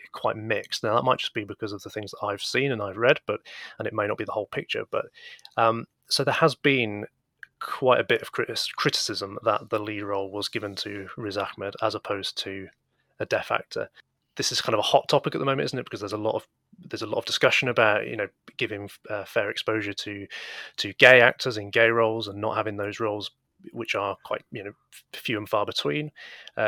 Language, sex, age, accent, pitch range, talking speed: English, male, 30-49, British, 105-145 Hz, 230 wpm